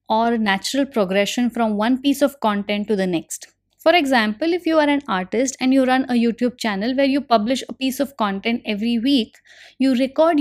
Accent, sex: Indian, female